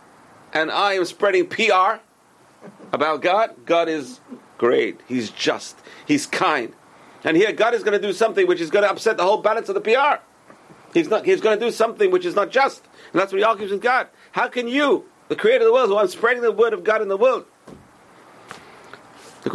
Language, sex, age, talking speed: English, male, 50-69, 220 wpm